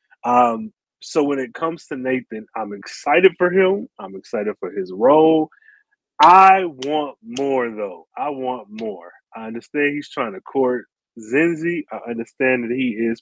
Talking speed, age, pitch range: 160 wpm, 30-49, 115-170 Hz